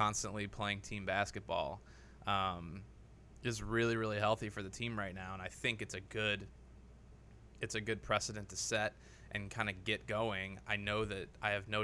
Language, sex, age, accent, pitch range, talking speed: English, male, 20-39, American, 100-110 Hz, 180 wpm